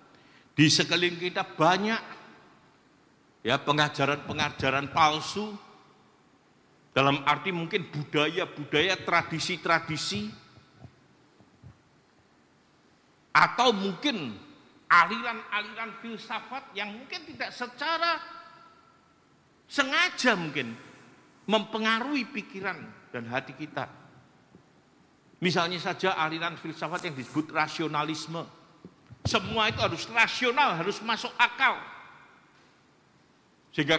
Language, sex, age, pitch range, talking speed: Indonesian, male, 50-69, 155-255 Hz, 75 wpm